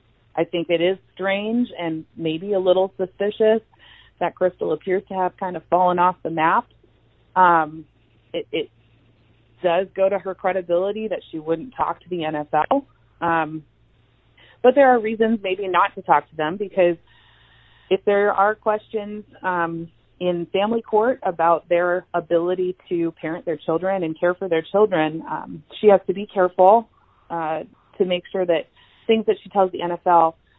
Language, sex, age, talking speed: English, female, 30-49, 165 wpm